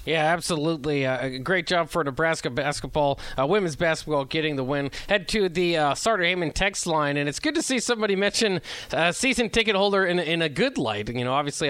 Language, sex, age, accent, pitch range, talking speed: English, male, 30-49, American, 145-195 Hz, 225 wpm